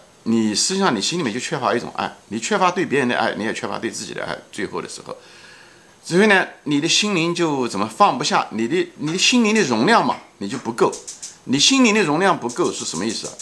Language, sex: Chinese, male